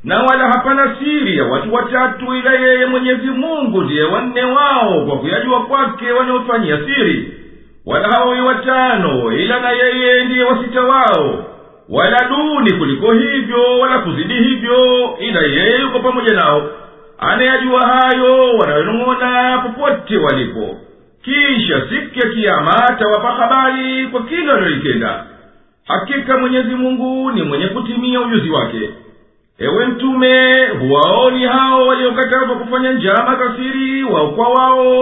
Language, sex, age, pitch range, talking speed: English, male, 50-69, 245-260 Hz, 120 wpm